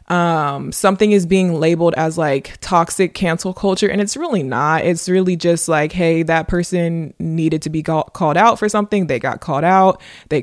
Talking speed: 190 wpm